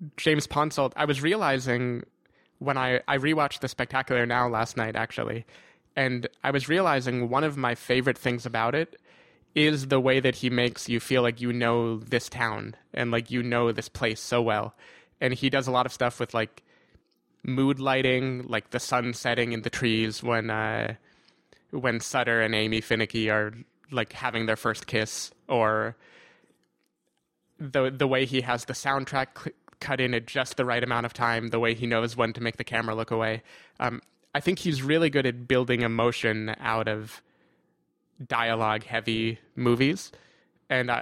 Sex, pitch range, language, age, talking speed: male, 115-135 Hz, English, 20-39, 180 wpm